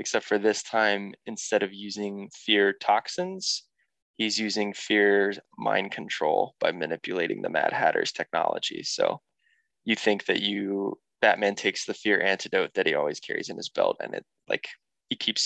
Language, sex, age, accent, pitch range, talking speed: English, male, 20-39, American, 100-110 Hz, 165 wpm